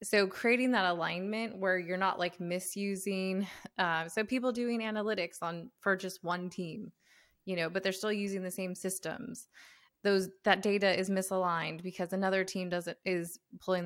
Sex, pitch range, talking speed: female, 175-205 Hz, 170 wpm